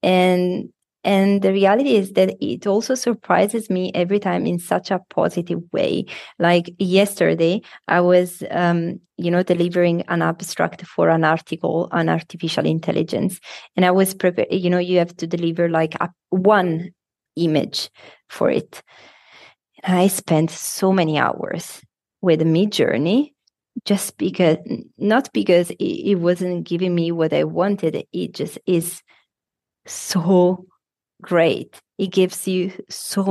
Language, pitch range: Czech, 170-200 Hz